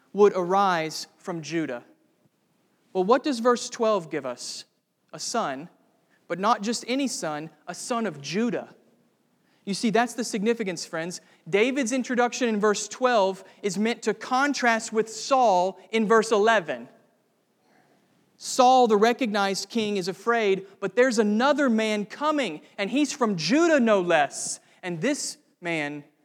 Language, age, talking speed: English, 30-49, 140 wpm